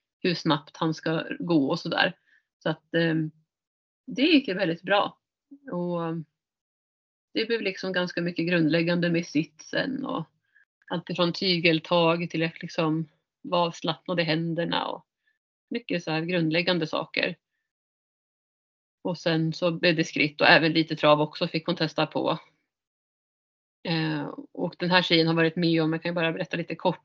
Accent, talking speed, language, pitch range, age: native, 155 wpm, Swedish, 160-180 Hz, 30-49